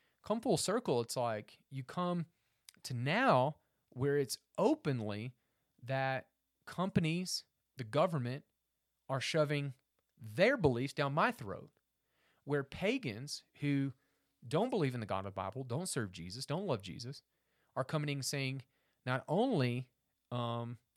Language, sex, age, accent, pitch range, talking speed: English, male, 30-49, American, 120-160 Hz, 135 wpm